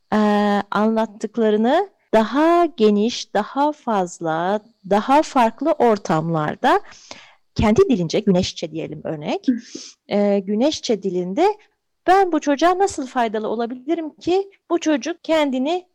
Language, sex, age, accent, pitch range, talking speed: Turkish, female, 40-59, native, 190-290 Hz, 100 wpm